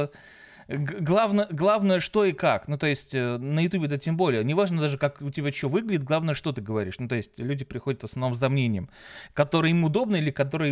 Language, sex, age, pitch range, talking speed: Russian, male, 20-39, 130-160 Hz, 220 wpm